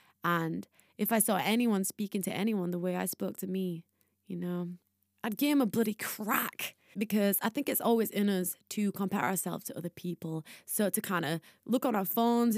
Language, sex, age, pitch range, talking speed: English, female, 20-39, 185-235 Hz, 205 wpm